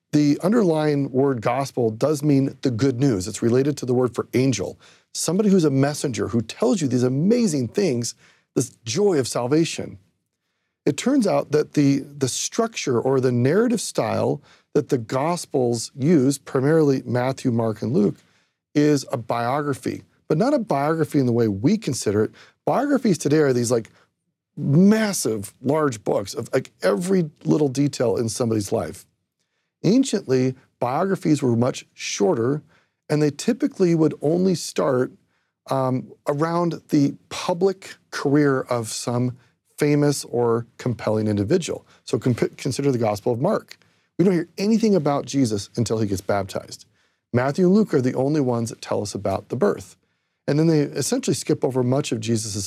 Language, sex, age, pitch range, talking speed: English, male, 40-59, 125-160 Hz, 160 wpm